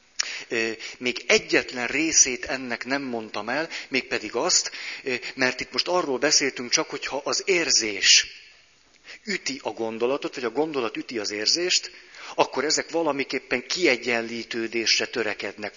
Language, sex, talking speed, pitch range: Hungarian, male, 120 wpm, 115-150 Hz